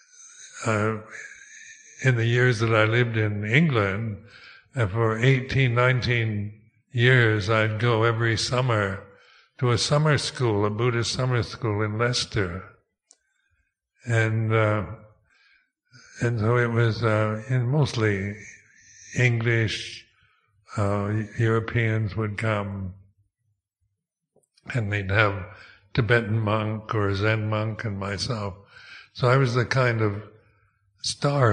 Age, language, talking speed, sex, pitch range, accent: 60-79, English, 110 wpm, male, 105-125 Hz, American